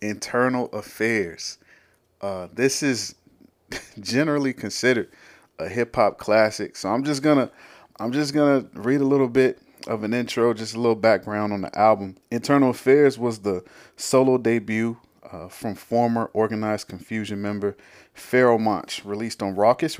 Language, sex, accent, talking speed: English, male, American, 145 wpm